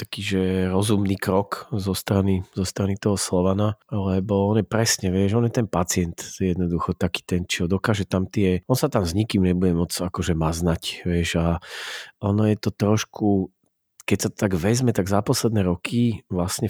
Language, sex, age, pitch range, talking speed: Slovak, male, 40-59, 90-105 Hz, 180 wpm